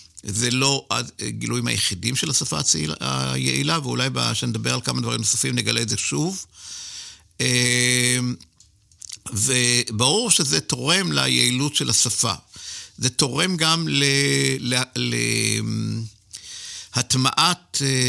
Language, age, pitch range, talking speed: Hebrew, 50-69, 105-150 Hz, 95 wpm